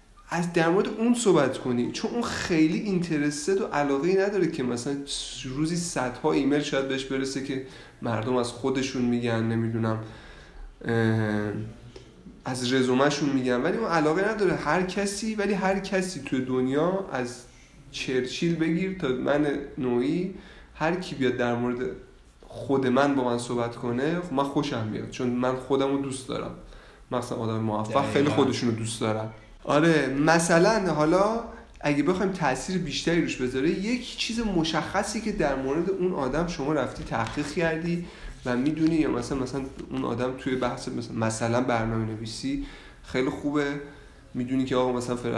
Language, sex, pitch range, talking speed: Persian, male, 120-160 Hz, 150 wpm